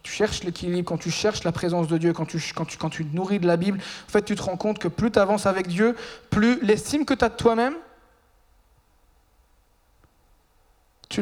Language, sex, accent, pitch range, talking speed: French, male, French, 165-230 Hz, 215 wpm